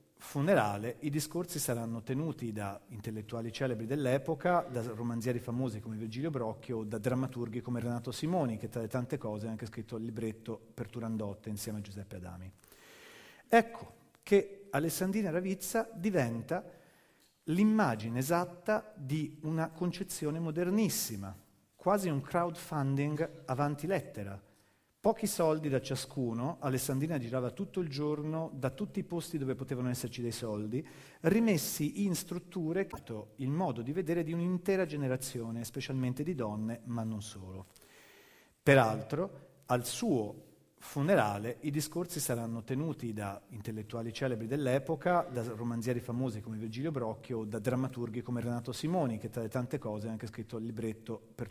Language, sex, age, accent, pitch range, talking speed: Italian, male, 40-59, native, 115-160 Hz, 140 wpm